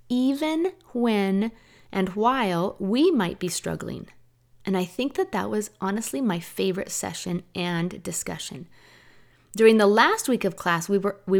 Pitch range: 185-245 Hz